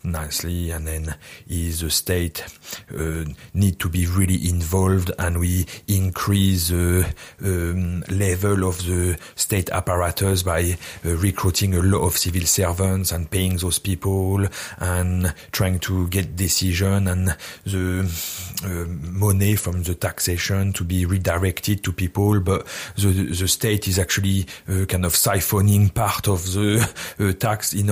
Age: 40-59